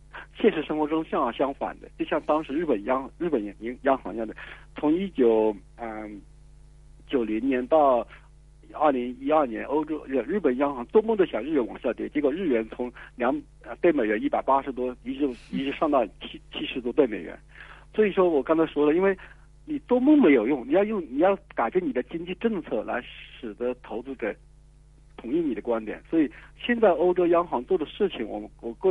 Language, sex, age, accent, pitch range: Chinese, male, 50-69, native, 125-175 Hz